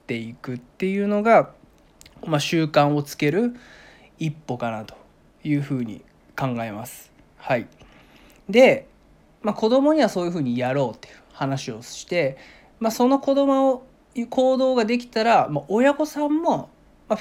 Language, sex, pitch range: Japanese, male, 135-210 Hz